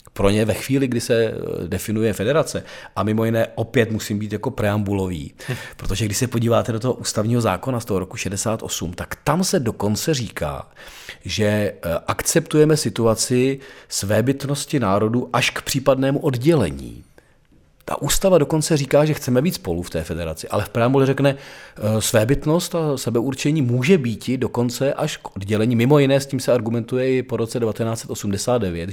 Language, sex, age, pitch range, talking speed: Czech, male, 40-59, 100-130 Hz, 165 wpm